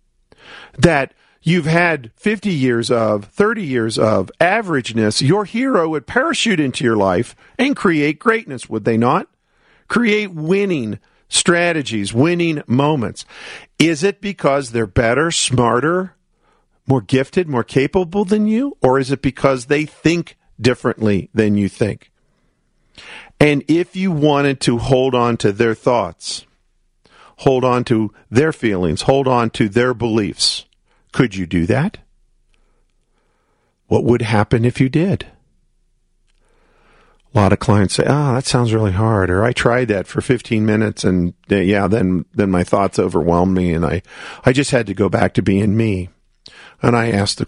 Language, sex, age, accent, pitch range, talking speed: English, male, 50-69, American, 105-150 Hz, 150 wpm